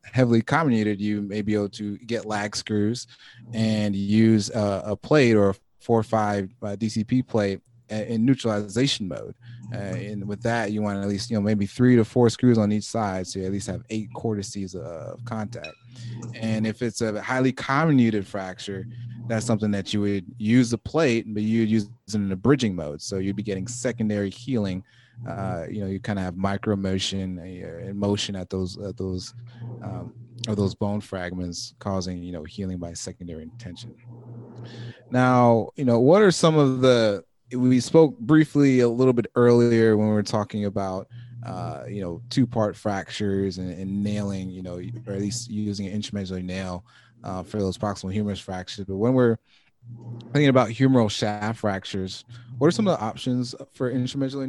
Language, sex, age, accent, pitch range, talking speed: English, male, 30-49, American, 100-120 Hz, 185 wpm